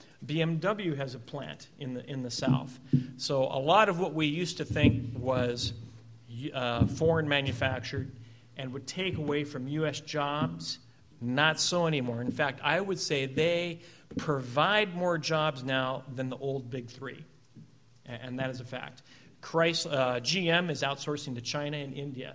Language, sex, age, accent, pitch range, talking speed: English, male, 40-59, American, 130-155 Hz, 165 wpm